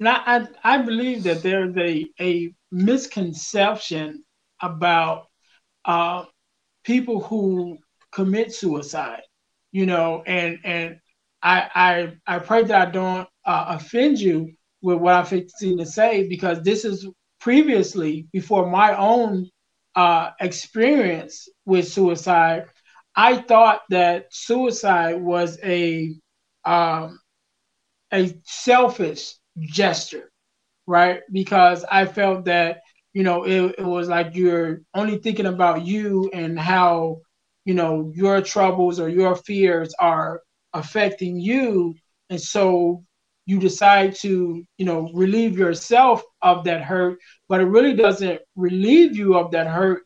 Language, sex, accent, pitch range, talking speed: English, male, American, 175-205 Hz, 125 wpm